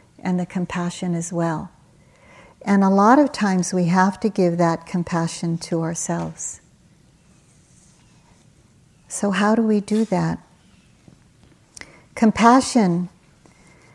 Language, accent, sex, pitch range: English, American, female, 170-195 Hz